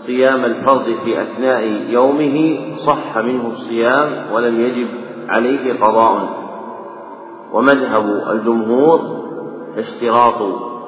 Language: Arabic